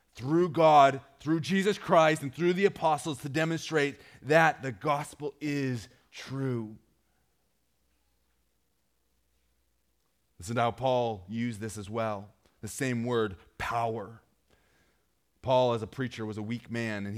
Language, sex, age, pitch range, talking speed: English, male, 30-49, 105-150 Hz, 130 wpm